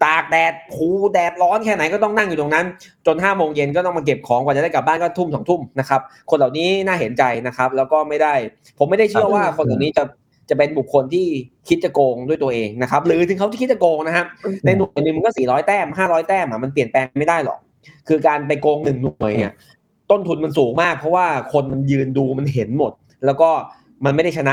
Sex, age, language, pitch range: male, 20-39, English, 130-170 Hz